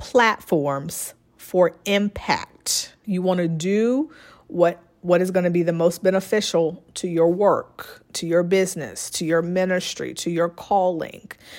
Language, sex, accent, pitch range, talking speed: English, female, American, 170-195 Hz, 145 wpm